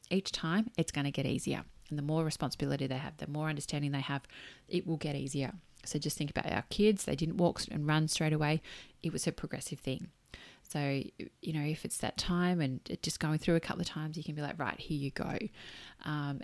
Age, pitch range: 30-49, 145-175 Hz